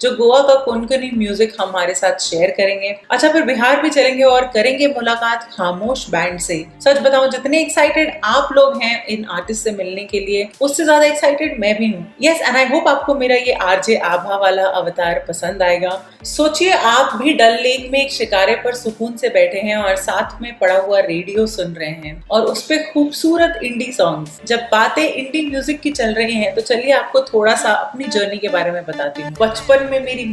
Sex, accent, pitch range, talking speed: female, native, 185-255 Hz, 195 wpm